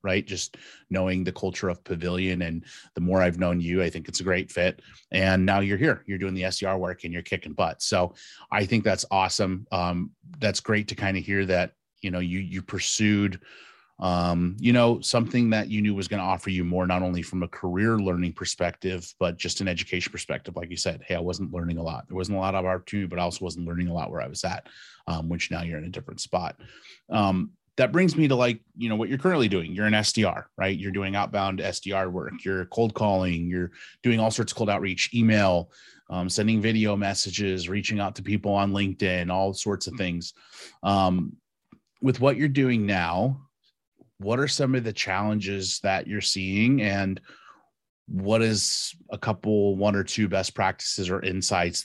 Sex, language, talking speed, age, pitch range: male, English, 210 wpm, 30-49, 90-105 Hz